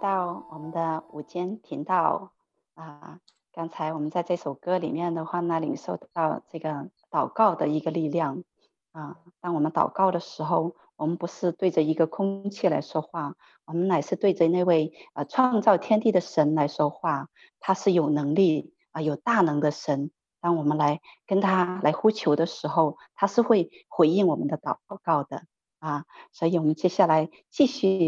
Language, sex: Chinese, female